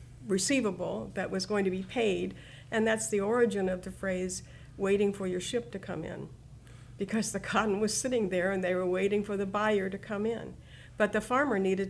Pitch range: 170-210 Hz